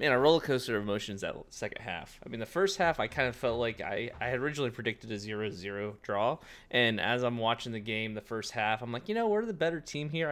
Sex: male